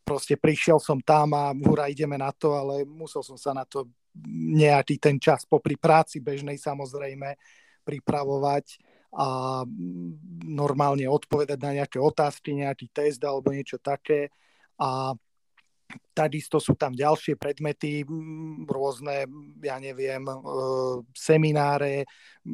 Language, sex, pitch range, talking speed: Slovak, male, 140-150 Hz, 115 wpm